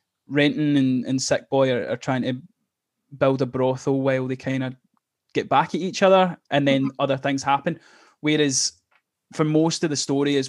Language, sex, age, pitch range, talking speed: English, male, 20-39, 130-145 Hz, 190 wpm